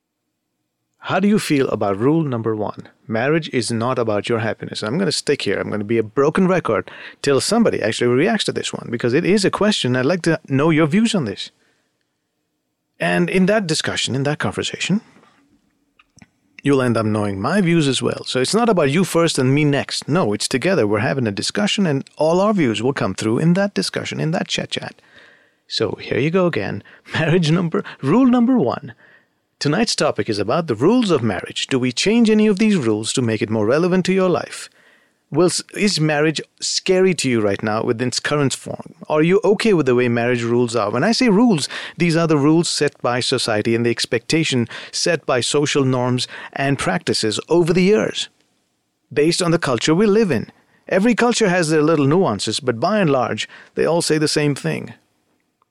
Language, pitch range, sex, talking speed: English, 120-185 Hz, male, 205 wpm